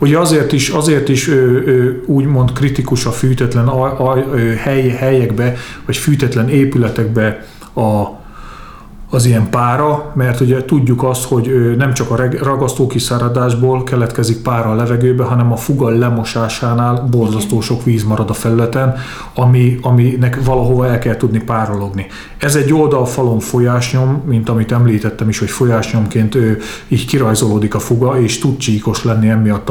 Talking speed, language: 145 wpm, Hungarian